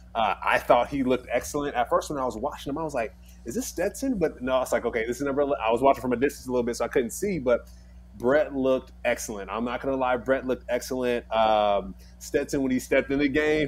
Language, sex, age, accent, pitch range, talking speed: English, male, 20-39, American, 110-140 Hz, 265 wpm